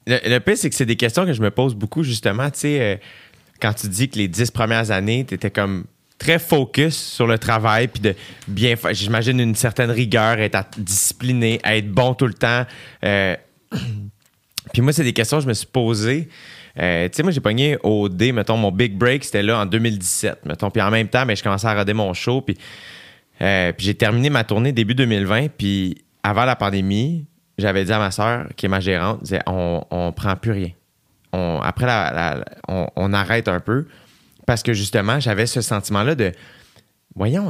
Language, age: French, 30-49